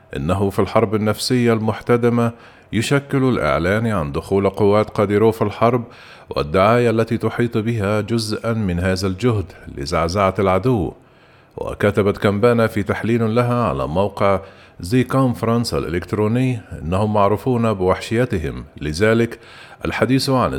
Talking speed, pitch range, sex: 115 wpm, 100-115 Hz, male